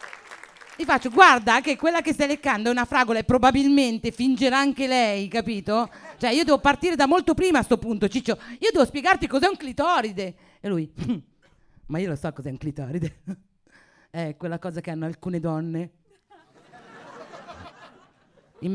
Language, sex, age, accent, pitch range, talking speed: Italian, female, 40-59, native, 155-265 Hz, 165 wpm